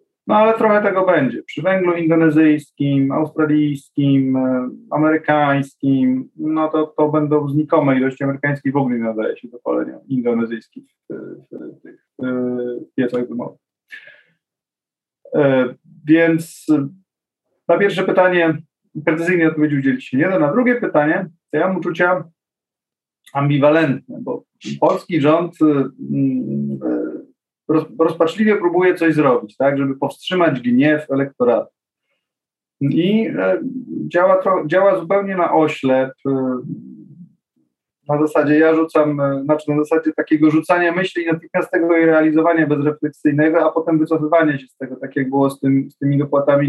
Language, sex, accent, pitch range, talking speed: Polish, male, native, 135-165 Hz, 120 wpm